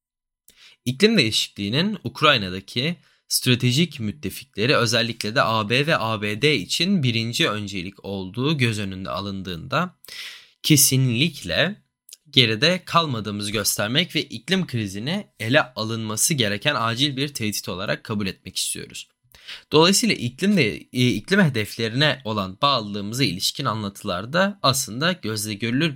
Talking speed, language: 105 wpm, Turkish